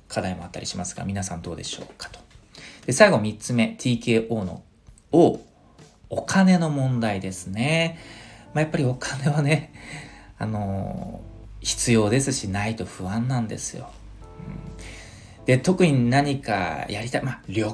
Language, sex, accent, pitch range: Japanese, male, native, 110-160 Hz